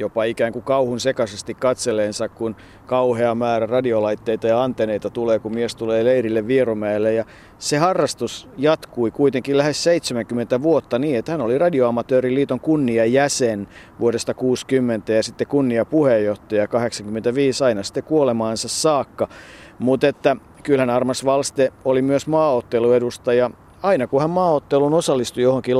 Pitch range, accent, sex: 115-140 Hz, native, male